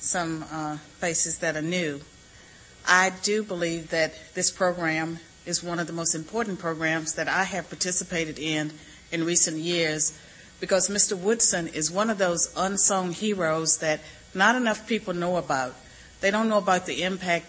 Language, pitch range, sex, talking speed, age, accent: English, 160-185 Hz, female, 165 wpm, 40-59, American